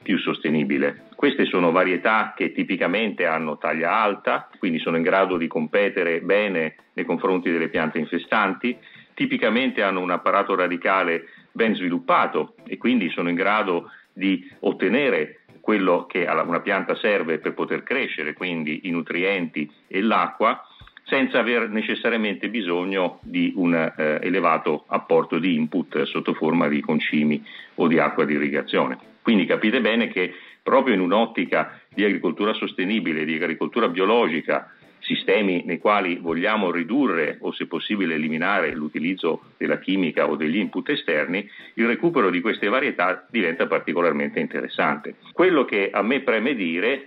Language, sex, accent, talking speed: Italian, male, native, 145 wpm